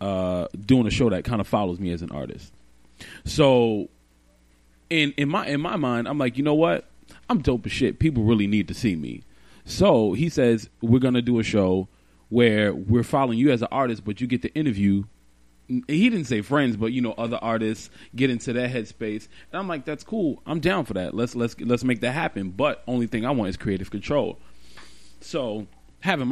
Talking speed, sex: 210 wpm, male